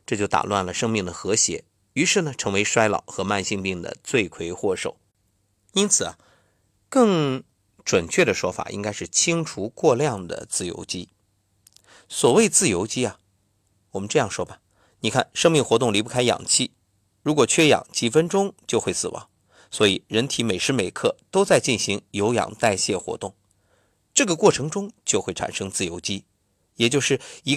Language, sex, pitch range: Chinese, male, 100-140 Hz